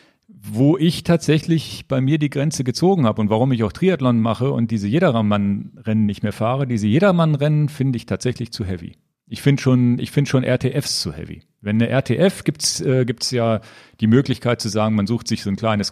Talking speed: 205 wpm